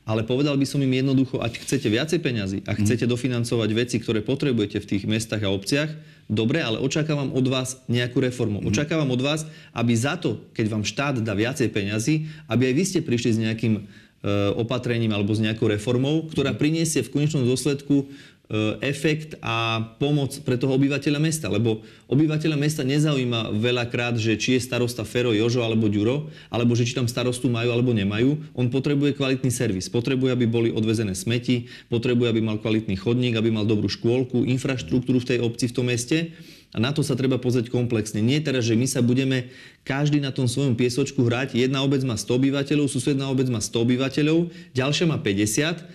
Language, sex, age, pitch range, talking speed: Slovak, male, 30-49, 115-140 Hz, 185 wpm